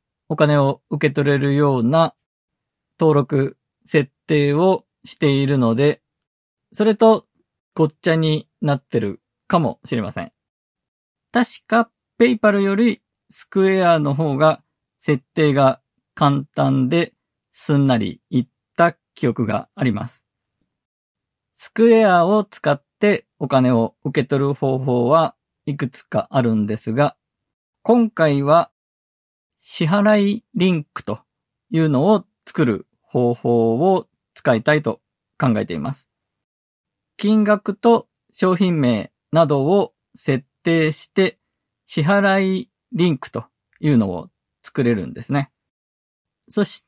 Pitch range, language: 130-195 Hz, Japanese